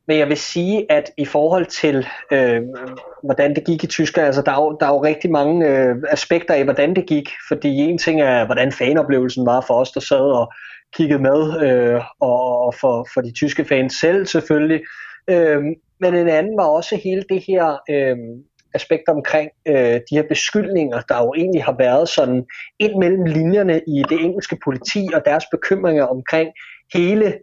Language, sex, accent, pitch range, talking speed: Danish, male, native, 130-160 Hz, 190 wpm